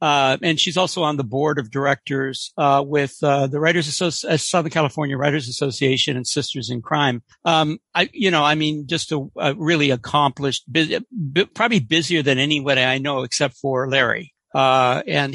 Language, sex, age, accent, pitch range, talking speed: English, male, 60-79, American, 135-160 Hz, 190 wpm